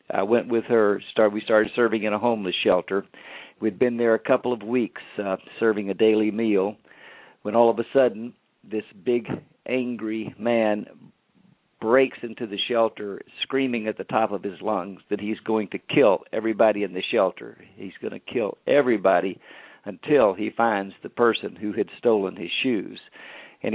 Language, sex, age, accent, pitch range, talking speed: English, male, 50-69, American, 110-125 Hz, 170 wpm